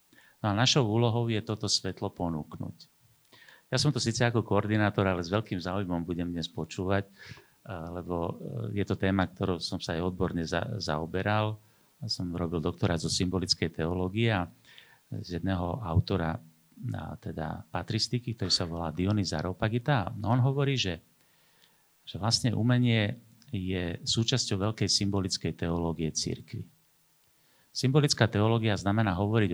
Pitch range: 90-120 Hz